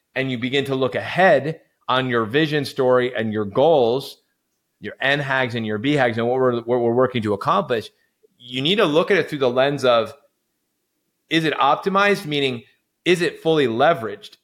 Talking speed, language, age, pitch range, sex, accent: 185 wpm, English, 30-49, 125-160 Hz, male, American